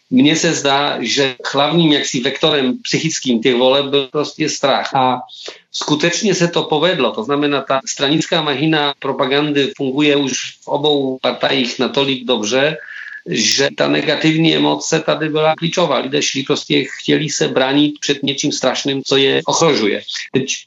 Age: 40-59